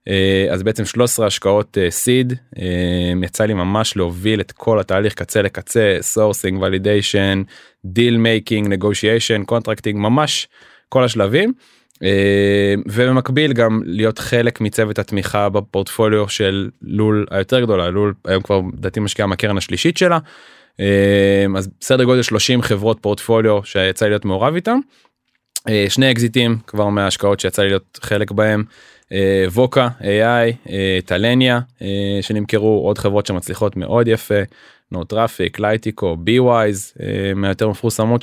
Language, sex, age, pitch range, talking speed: Hebrew, male, 20-39, 100-120 Hz, 130 wpm